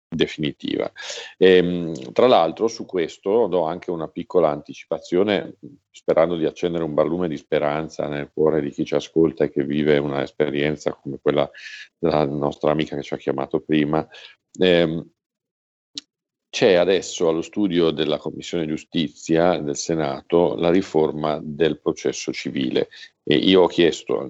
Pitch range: 75-85 Hz